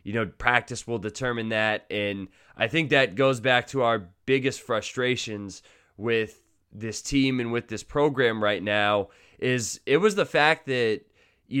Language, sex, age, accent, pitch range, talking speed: English, male, 20-39, American, 110-145 Hz, 165 wpm